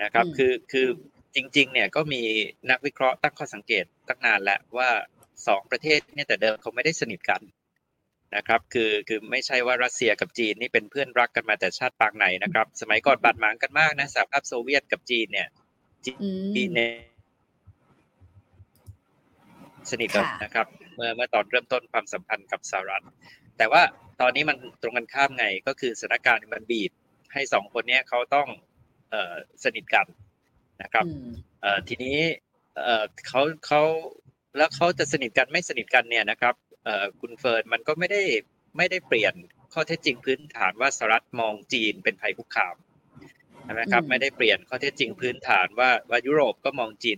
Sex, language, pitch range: male, English, 115-150 Hz